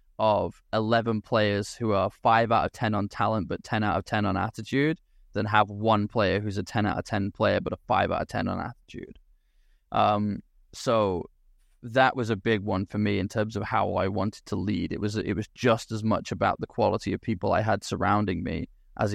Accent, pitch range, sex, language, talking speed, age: British, 100-115 Hz, male, English, 225 wpm, 10-29